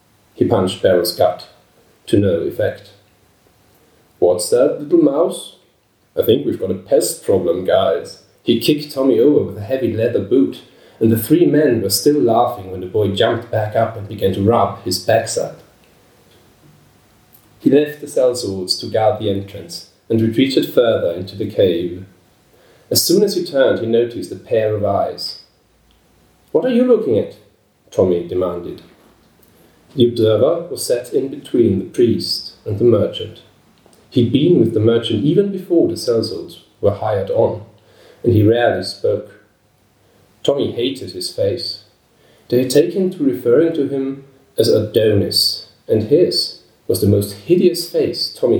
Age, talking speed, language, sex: 40-59, 160 wpm, English, male